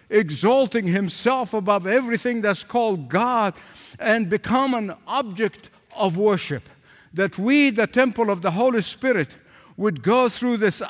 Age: 60-79